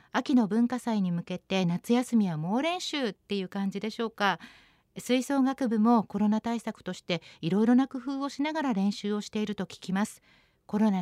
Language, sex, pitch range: Japanese, female, 200-265 Hz